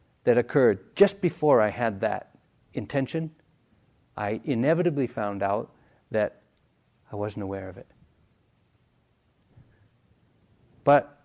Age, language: 60-79, English